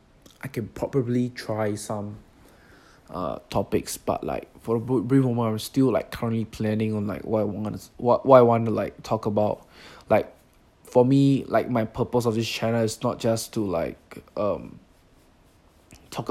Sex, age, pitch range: male, 20-39, 105-120 Hz